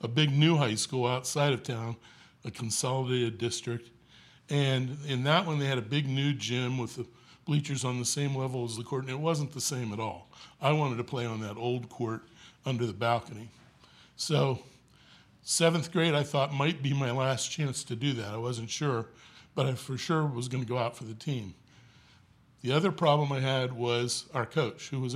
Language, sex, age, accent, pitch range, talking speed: English, male, 60-79, American, 115-145 Hz, 205 wpm